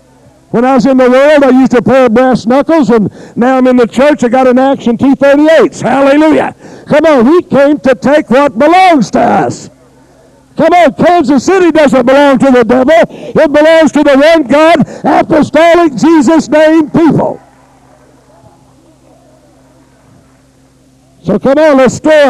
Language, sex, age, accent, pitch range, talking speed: English, male, 60-79, American, 210-275 Hz, 155 wpm